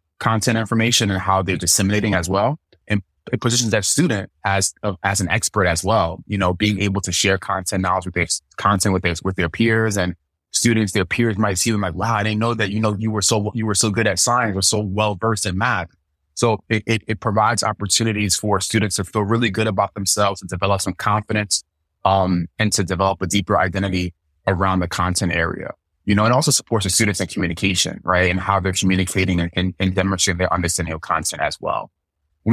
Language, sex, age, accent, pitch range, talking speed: English, male, 20-39, American, 95-110 Hz, 220 wpm